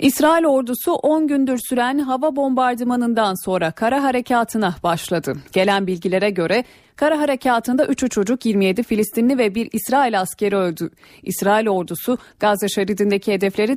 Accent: native